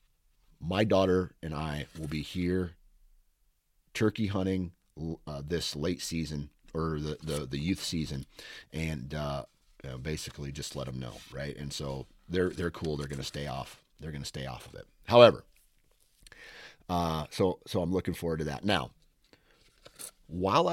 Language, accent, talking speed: English, American, 155 wpm